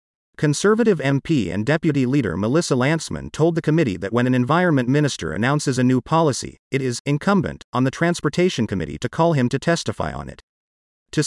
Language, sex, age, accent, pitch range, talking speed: English, male, 40-59, American, 120-165 Hz, 180 wpm